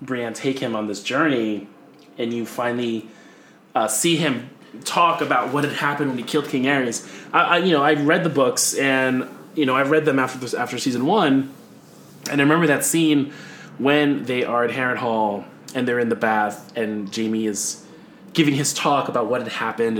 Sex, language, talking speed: male, English, 200 wpm